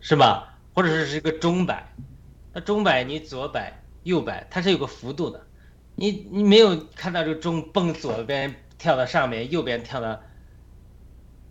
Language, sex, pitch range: Chinese, male, 100-160 Hz